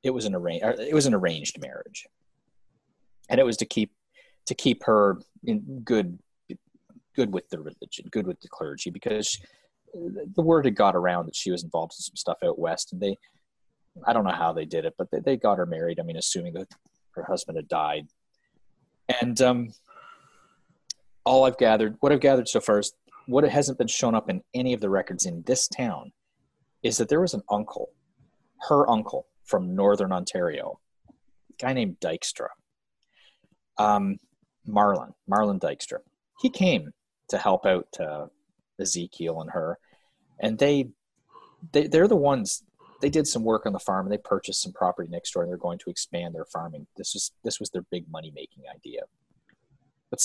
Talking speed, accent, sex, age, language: 185 wpm, American, male, 30-49, English